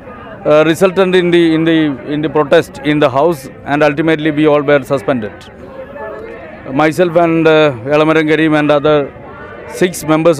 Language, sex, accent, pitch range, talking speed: Hindi, male, native, 150-175 Hz, 160 wpm